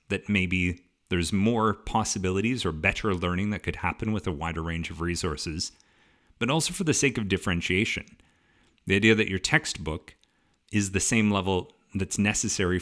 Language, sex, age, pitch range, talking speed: English, male, 30-49, 90-110 Hz, 165 wpm